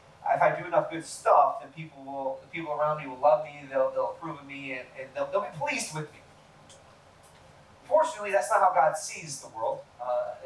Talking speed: 220 wpm